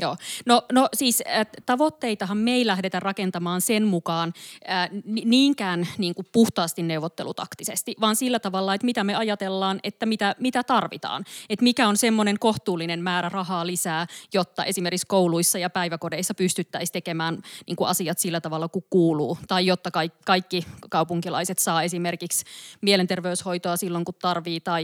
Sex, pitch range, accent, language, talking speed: female, 175-210 Hz, native, Finnish, 145 wpm